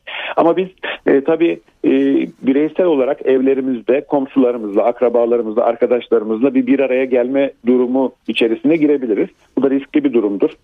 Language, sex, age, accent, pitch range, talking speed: Turkish, male, 50-69, native, 120-160 Hz, 130 wpm